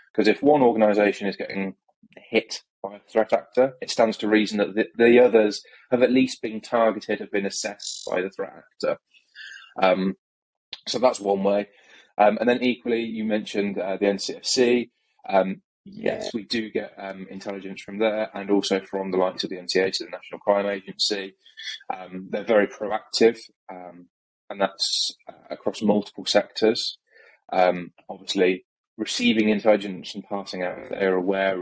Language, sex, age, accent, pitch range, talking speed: English, male, 20-39, British, 95-110 Hz, 165 wpm